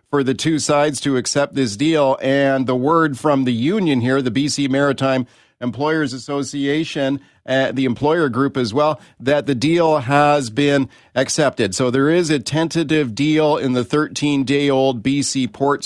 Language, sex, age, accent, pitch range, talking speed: English, male, 50-69, American, 130-155 Hz, 165 wpm